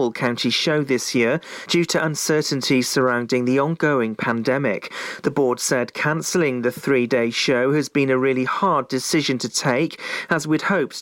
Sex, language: male, English